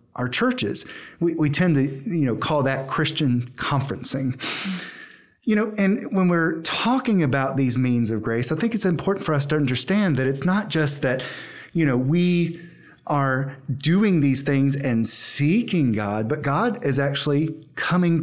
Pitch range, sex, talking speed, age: 125-165 Hz, male, 170 wpm, 30-49